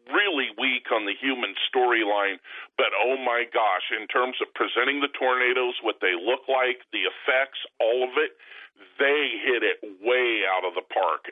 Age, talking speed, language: 40-59, 175 wpm, English